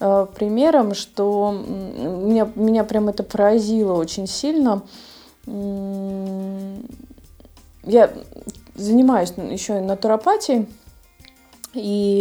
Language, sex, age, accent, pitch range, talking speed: Russian, female, 20-39, native, 180-225 Hz, 75 wpm